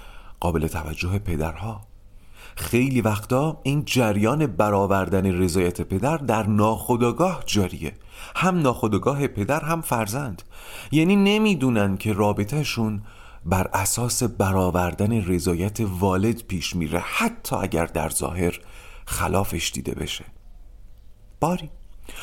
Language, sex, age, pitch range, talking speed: Persian, male, 40-59, 90-135 Hz, 100 wpm